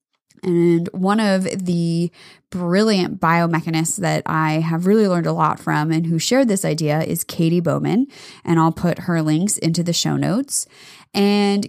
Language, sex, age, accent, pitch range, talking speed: English, female, 20-39, American, 170-230 Hz, 165 wpm